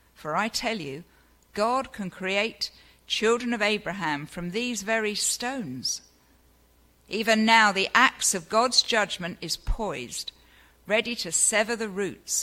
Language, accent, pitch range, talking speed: English, British, 150-220 Hz, 135 wpm